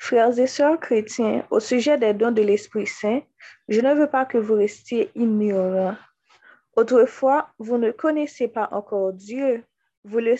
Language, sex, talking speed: French, female, 155 wpm